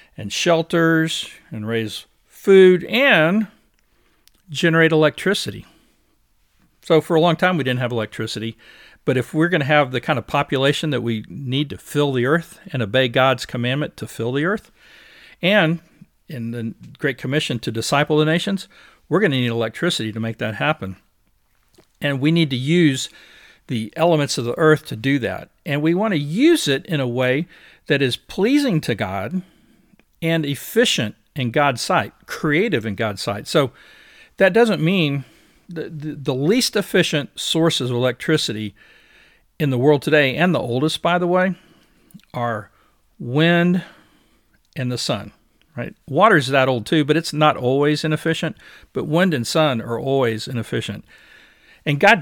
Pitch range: 120-165 Hz